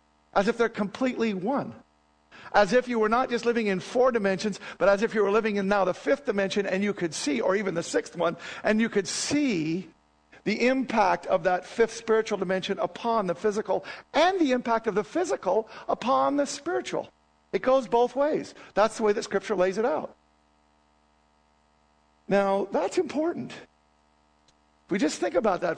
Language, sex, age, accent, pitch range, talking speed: English, male, 50-69, American, 170-235 Hz, 180 wpm